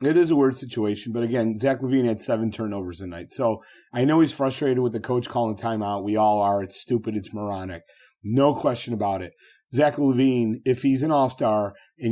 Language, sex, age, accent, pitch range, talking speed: English, male, 30-49, American, 115-140 Hz, 215 wpm